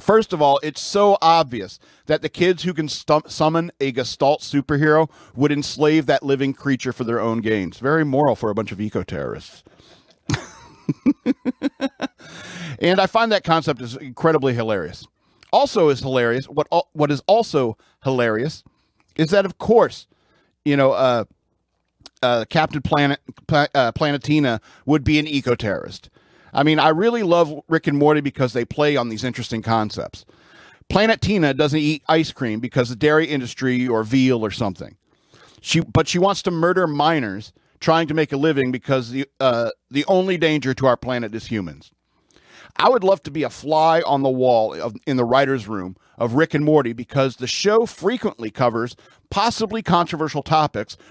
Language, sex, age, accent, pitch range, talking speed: English, male, 50-69, American, 125-160 Hz, 170 wpm